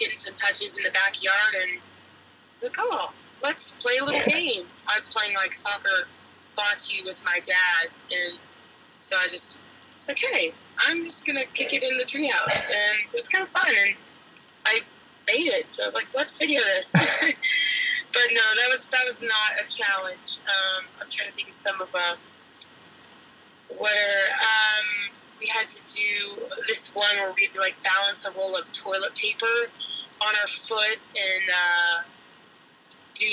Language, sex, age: English, female, 20-39